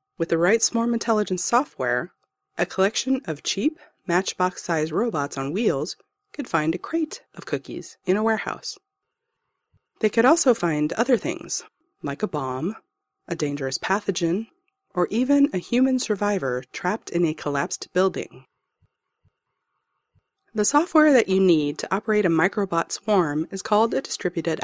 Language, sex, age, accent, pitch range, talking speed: English, female, 30-49, American, 170-260 Hz, 145 wpm